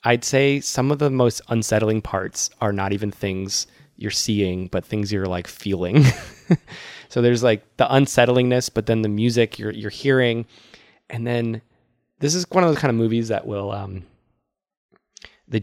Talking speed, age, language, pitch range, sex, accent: 175 wpm, 20-39, English, 95-115 Hz, male, American